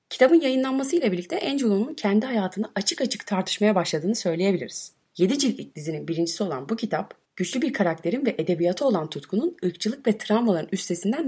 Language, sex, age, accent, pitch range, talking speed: Turkish, female, 30-49, native, 170-225 Hz, 150 wpm